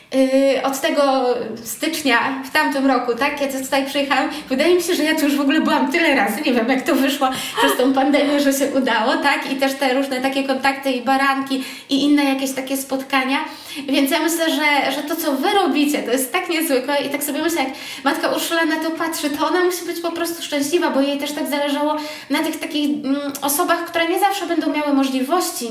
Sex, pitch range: female, 270-315 Hz